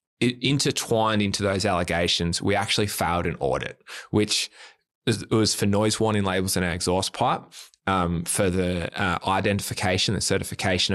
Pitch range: 90-105 Hz